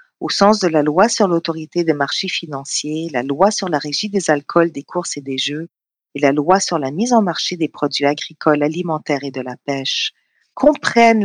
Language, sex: English, female